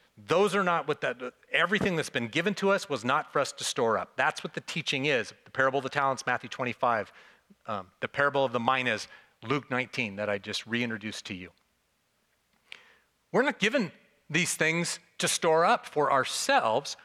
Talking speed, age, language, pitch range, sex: 190 wpm, 40-59, English, 130-175 Hz, male